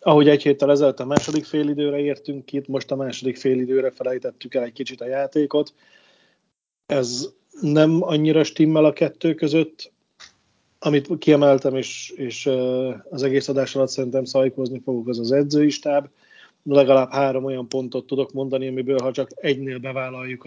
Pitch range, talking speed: 125-140 Hz, 155 wpm